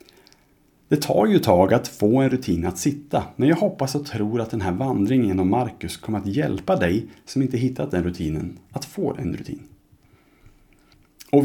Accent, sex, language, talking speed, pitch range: Norwegian, male, Swedish, 185 wpm, 95-135 Hz